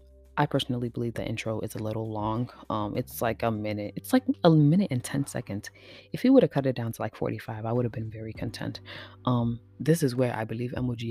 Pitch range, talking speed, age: 105-130 Hz, 240 wpm, 20-39